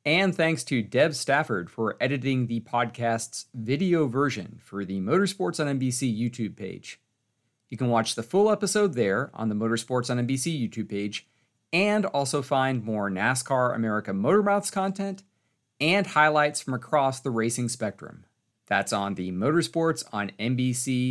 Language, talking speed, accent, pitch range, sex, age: English, 155 wpm, American, 110-150 Hz, male, 40-59